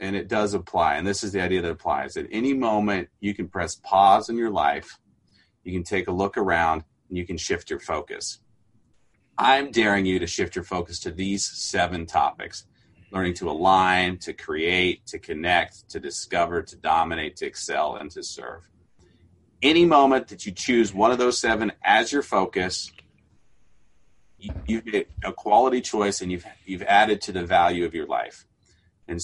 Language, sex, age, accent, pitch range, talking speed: English, male, 30-49, American, 90-125 Hz, 180 wpm